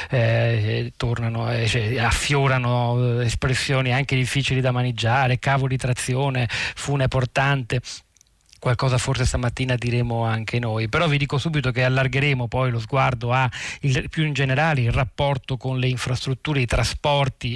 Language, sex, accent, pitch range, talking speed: Italian, male, native, 115-135 Hz, 150 wpm